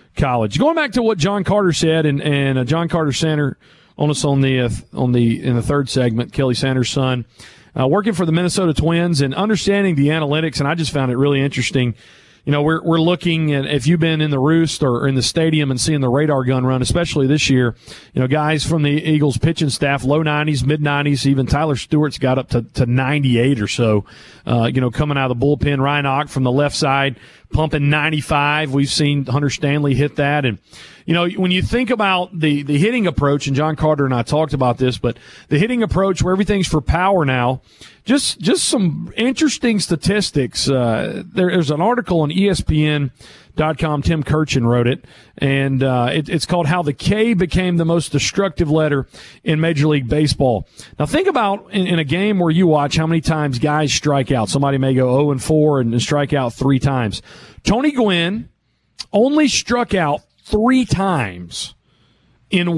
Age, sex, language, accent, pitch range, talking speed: 40-59, male, English, American, 135-170 Hz, 200 wpm